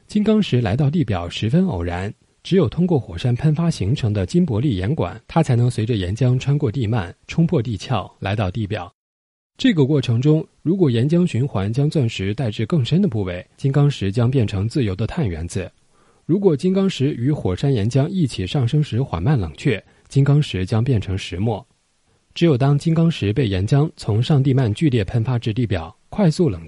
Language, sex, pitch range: Chinese, male, 100-150 Hz